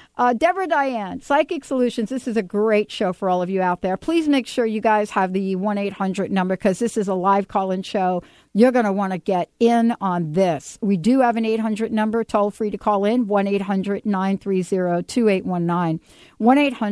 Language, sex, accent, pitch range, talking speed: English, female, American, 195-255 Hz, 190 wpm